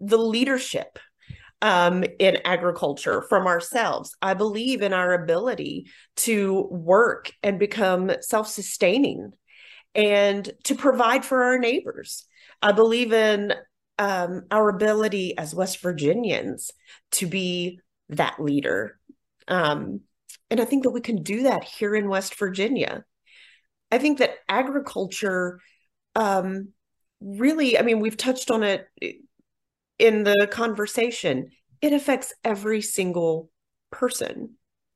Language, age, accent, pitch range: English, 30-49, American, 185-240 Hz